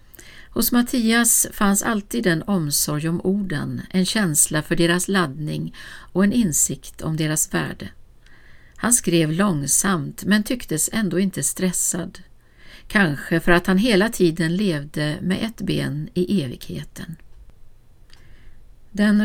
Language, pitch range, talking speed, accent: Swedish, 150-190 Hz, 125 wpm, native